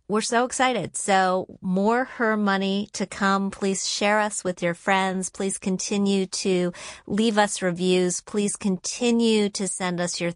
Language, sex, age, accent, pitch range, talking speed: English, female, 40-59, American, 175-215 Hz, 155 wpm